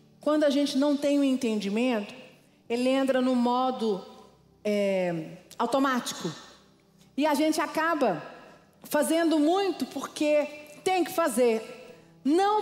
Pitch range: 240-330 Hz